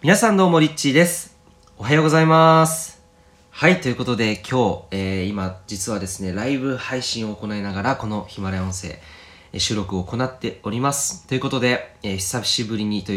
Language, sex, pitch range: Japanese, male, 90-130 Hz